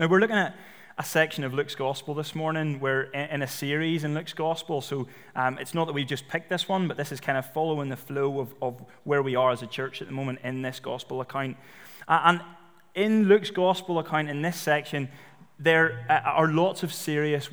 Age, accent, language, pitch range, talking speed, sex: 20-39, British, English, 135-170 Hz, 215 wpm, male